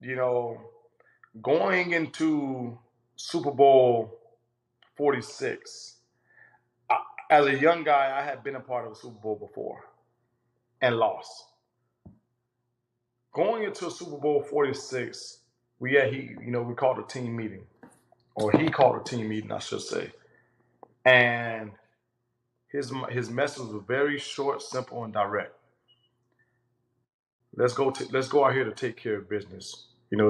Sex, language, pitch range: male, English, 120-130 Hz